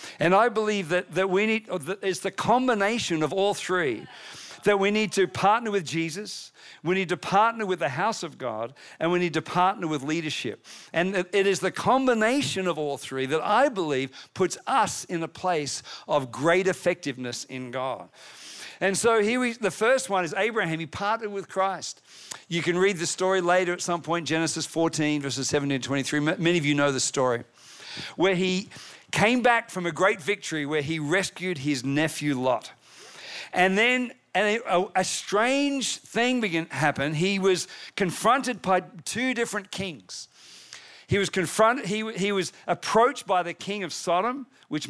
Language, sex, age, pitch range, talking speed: English, male, 50-69, 160-210 Hz, 180 wpm